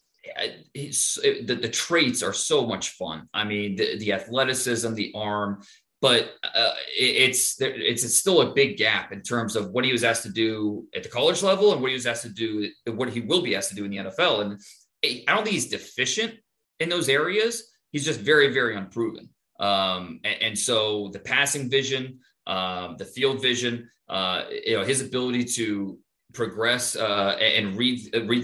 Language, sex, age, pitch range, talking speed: English, male, 30-49, 110-145 Hz, 190 wpm